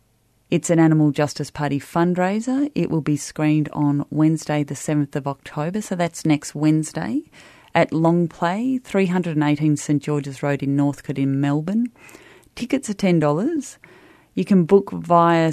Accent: Australian